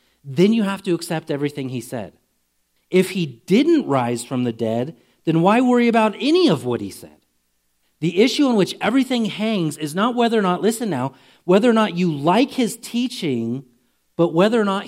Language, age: English, 40-59